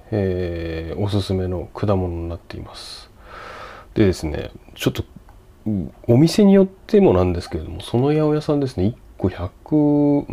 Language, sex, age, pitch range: Japanese, male, 30-49, 90-115 Hz